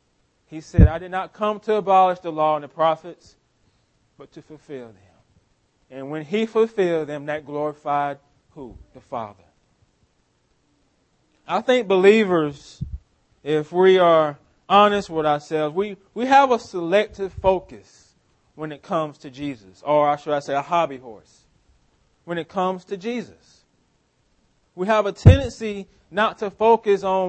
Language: English